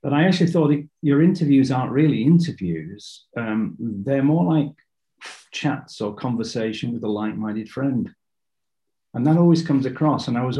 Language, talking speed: English, 165 wpm